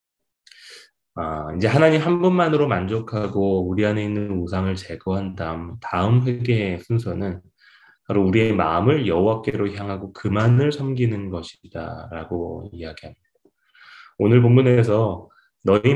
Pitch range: 95-125 Hz